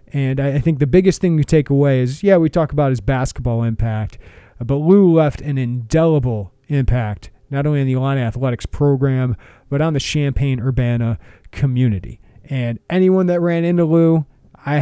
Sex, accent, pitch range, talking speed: male, American, 120-145 Hz, 170 wpm